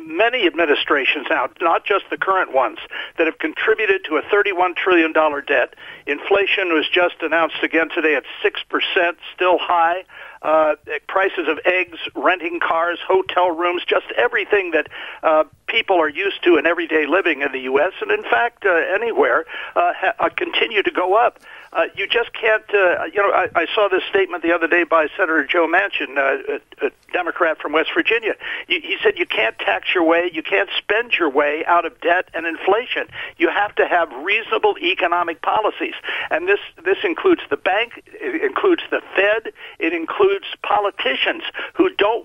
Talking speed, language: 175 wpm, English